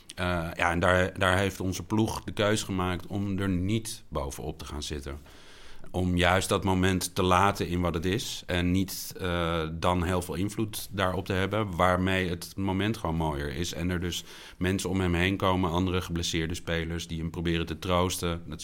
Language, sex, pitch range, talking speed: English, male, 85-100 Hz, 195 wpm